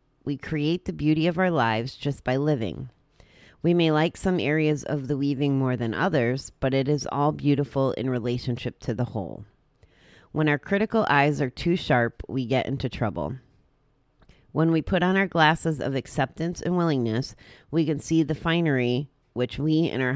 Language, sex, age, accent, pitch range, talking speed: English, female, 30-49, American, 125-160 Hz, 180 wpm